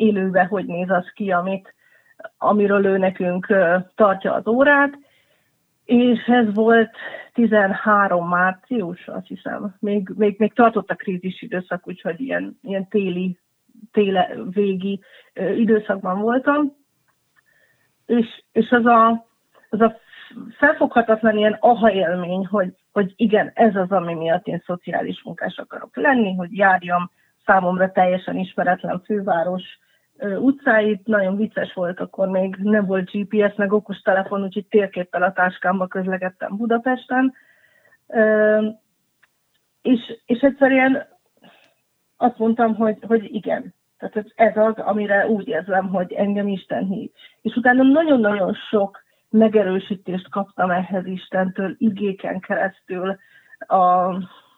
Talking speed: 115 wpm